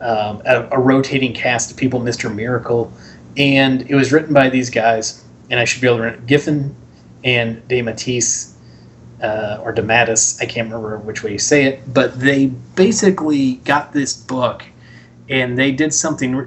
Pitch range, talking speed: 115-135 Hz, 180 wpm